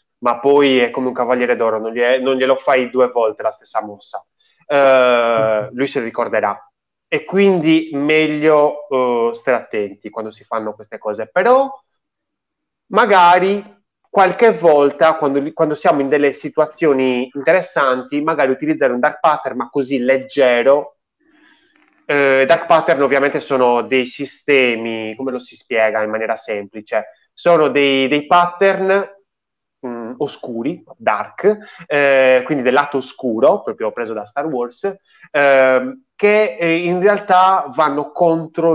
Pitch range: 125-165 Hz